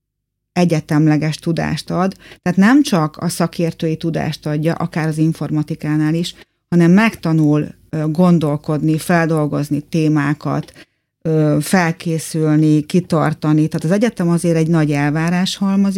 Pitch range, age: 150-180 Hz, 30-49